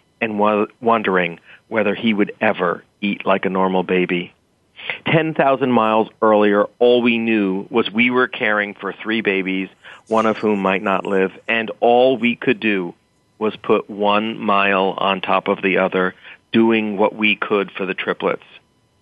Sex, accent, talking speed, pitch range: male, American, 160 wpm, 95-120 Hz